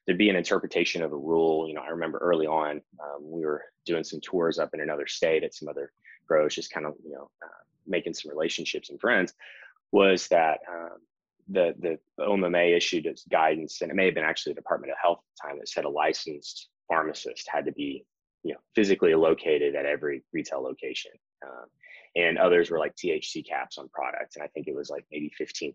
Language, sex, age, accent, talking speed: English, male, 20-39, American, 215 wpm